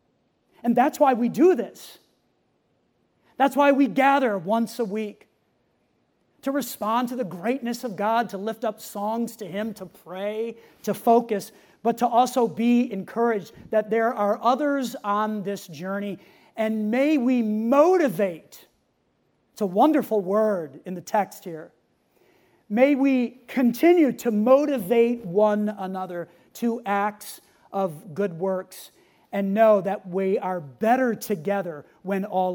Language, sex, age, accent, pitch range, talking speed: English, male, 40-59, American, 195-240 Hz, 140 wpm